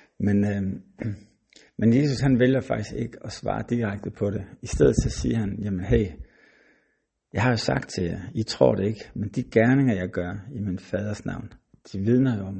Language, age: Danish, 60-79